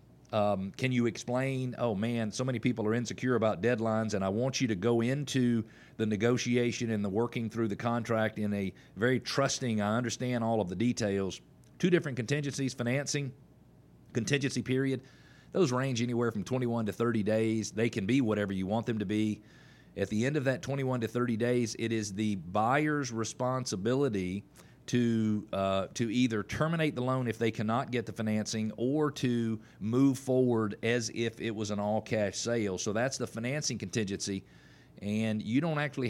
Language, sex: English, male